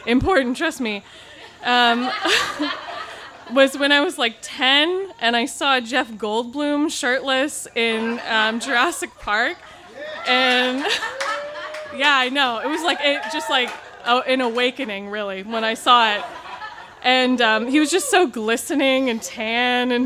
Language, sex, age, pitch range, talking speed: English, female, 20-39, 220-270 Hz, 140 wpm